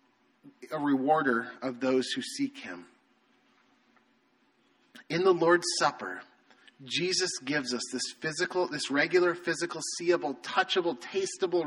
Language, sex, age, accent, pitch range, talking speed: English, male, 30-49, American, 125-160 Hz, 115 wpm